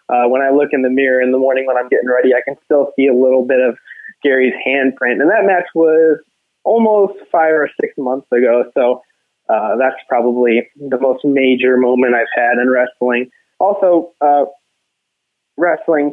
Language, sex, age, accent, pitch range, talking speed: English, male, 20-39, American, 130-170 Hz, 180 wpm